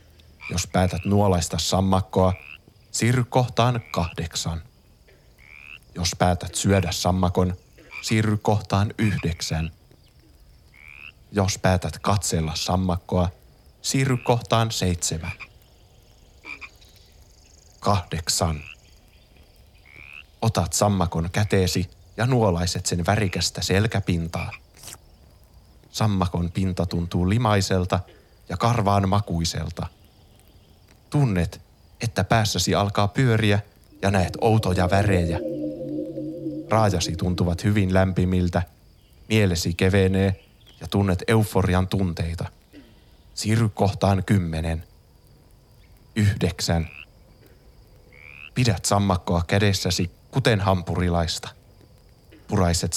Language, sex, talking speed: Finnish, male, 75 wpm